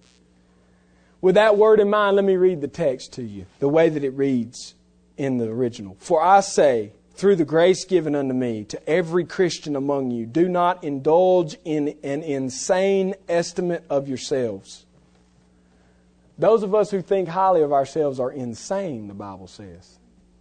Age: 40-59